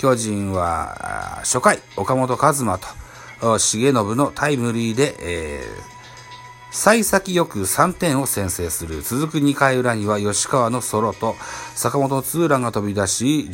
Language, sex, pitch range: Japanese, male, 95-135 Hz